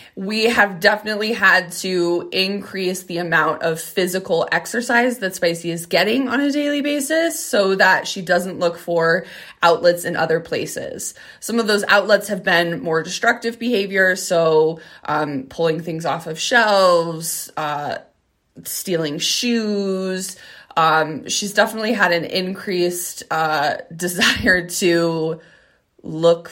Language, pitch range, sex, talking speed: English, 165-210 Hz, female, 130 wpm